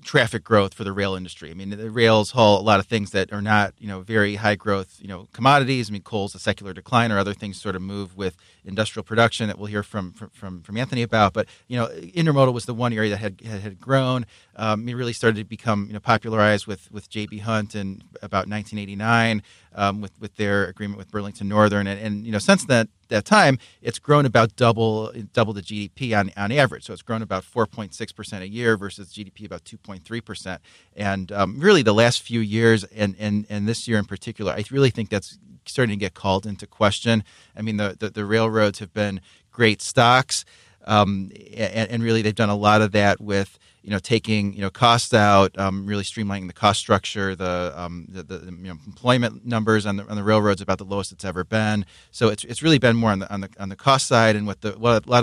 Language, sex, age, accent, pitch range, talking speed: English, male, 30-49, American, 100-115 Hz, 230 wpm